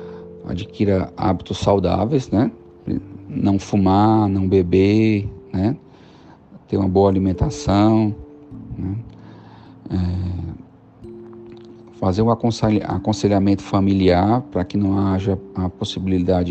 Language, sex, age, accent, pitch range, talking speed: Portuguese, male, 40-59, Brazilian, 95-115 Hz, 90 wpm